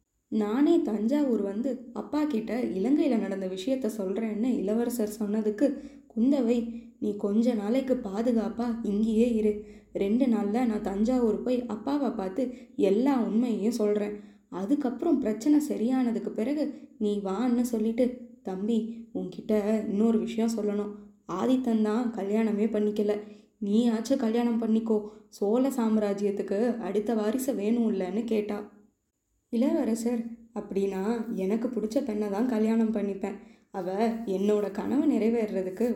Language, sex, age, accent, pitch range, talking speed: Tamil, female, 20-39, native, 210-250 Hz, 110 wpm